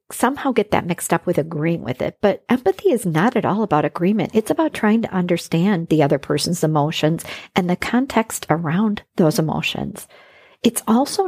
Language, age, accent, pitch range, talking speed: English, 50-69, American, 170-220 Hz, 180 wpm